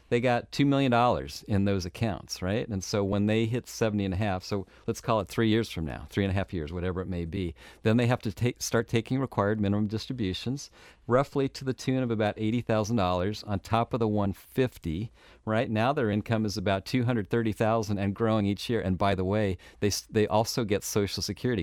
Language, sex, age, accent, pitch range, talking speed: English, male, 50-69, American, 100-120 Hz, 225 wpm